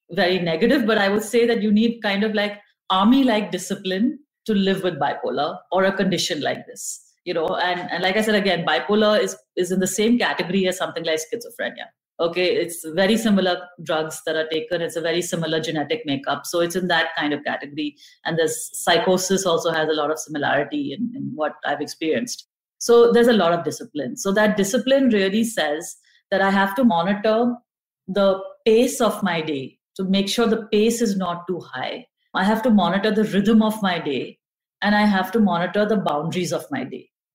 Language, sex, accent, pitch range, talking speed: English, female, Indian, 180-225 Hz, 200 wpm